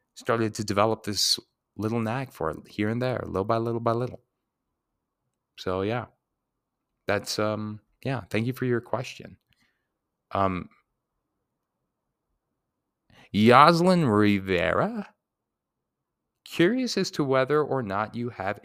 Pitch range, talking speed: 95-125 Hz, 120 wpm